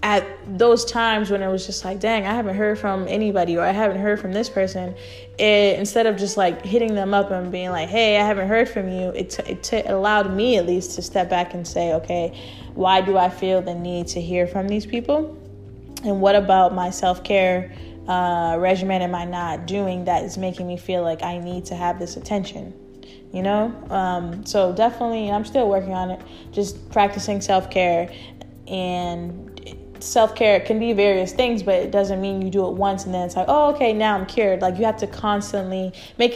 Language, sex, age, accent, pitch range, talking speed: English, female, 10-29, American, 180-205 Hz, 205 wpm